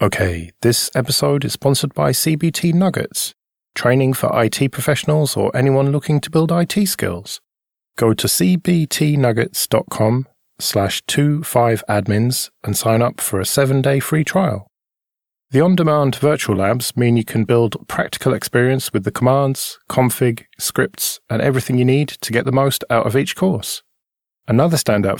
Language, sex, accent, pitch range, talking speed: English, male, British, 115-145 Hz, 150 wpm